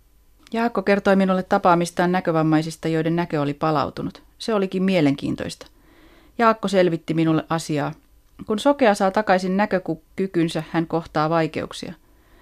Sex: female